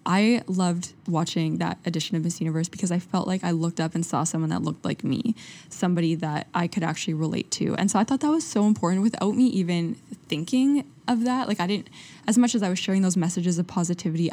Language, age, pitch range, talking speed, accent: English, 10-29, 160-195 Hz, 235 wpm, American